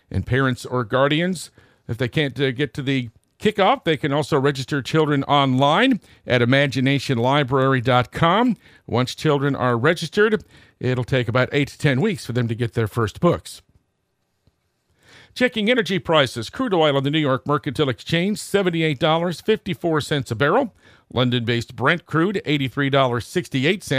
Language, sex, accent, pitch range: English, male, American, 125-160 Hz